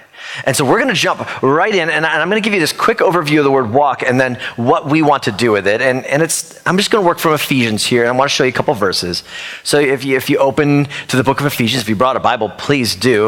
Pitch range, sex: 110-145 Hz, male